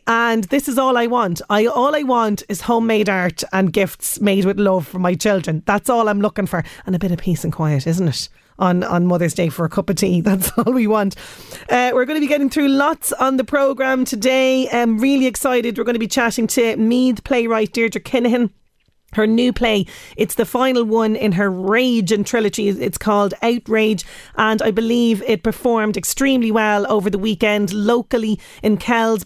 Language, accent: English, Irish